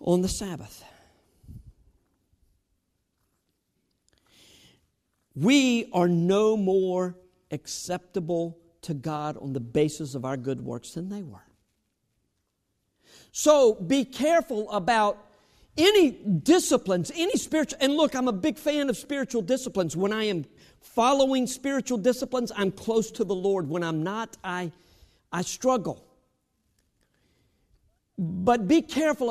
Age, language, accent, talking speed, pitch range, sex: 50-69, English, American, 115 wpm, 150-230 Hz, male